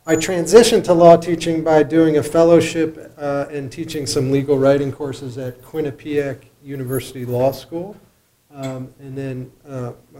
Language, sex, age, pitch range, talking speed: English, male, 40-59, 125-150 Hz, 145 wpm